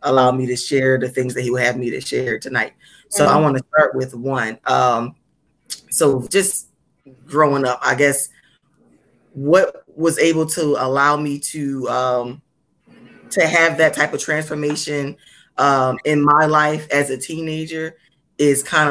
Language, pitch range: English, 125-145 Hz